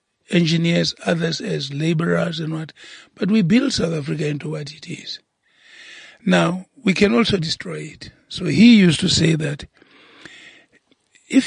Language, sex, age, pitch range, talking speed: English, male, 60-79, 155-205 Hz, 145 wpm